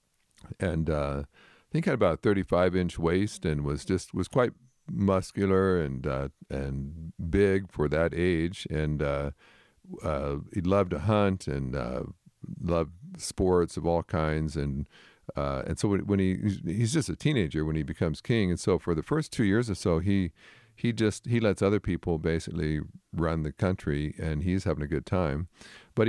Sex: male